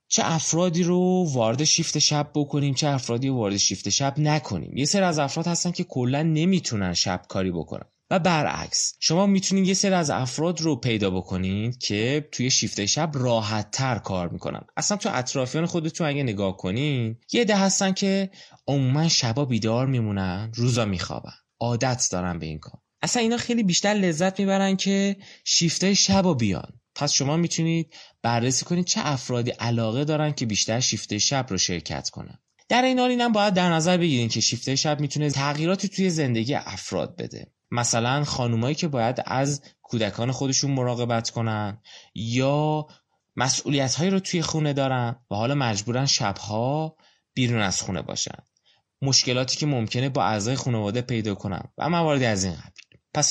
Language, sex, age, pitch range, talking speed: Persian, male, 20-39, 115-165 Hz, 160 wpm